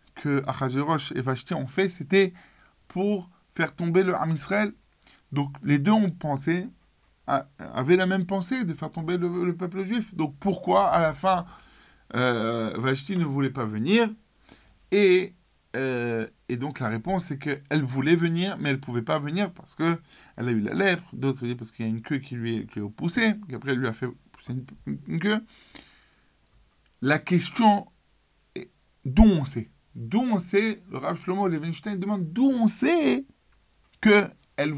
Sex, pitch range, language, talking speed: male, 120-190 Hz, French, 180 wpm